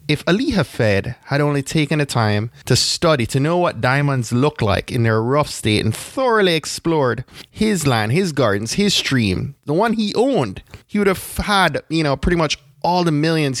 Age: 20-39